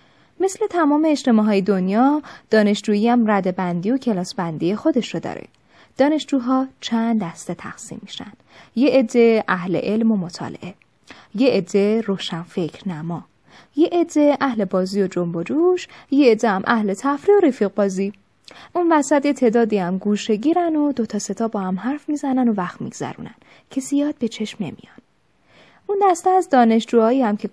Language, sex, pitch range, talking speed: Persian, female, 195-270 Hz, 165 wpm